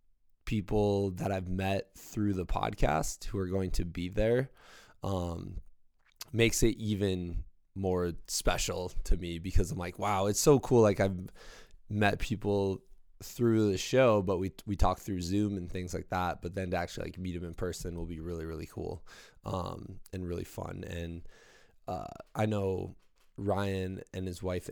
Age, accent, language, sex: 20-39, American, English, male